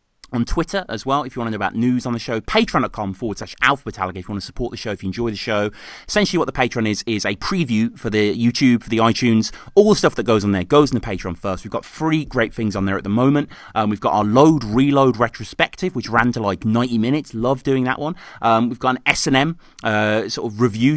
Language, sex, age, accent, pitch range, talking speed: English, male, 30-49, British, 105-140 Hz, 265 wpm